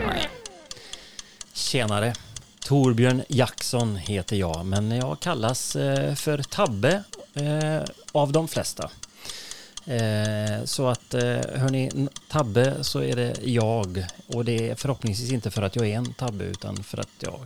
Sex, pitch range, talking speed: male, 100-135 Hz, 125 wpm